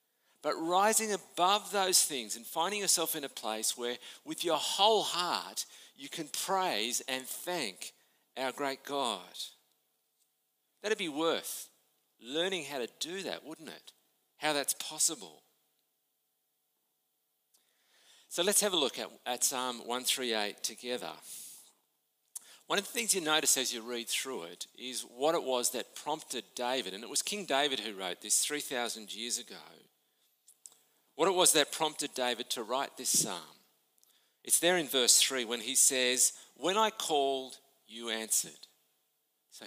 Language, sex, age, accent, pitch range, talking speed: English, male, 50-69, Australian, 125-170 Hz, 150 wpm